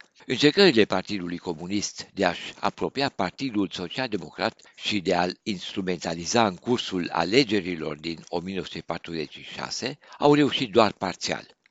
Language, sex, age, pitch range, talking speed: Romanian, male, 60-79, 90-130 Hz, 110 wpm